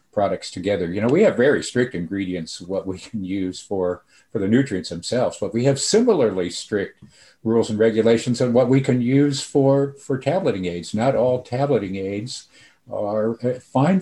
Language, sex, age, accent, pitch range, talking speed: English, male, 50-69, American, 95-130 Hz, 175 wpm